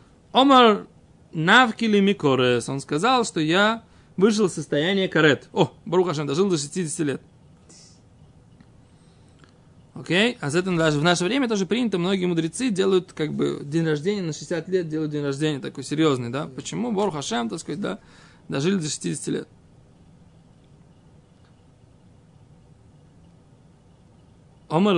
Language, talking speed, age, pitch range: Russian, 125 wpm, 20-39, 145-190 Hz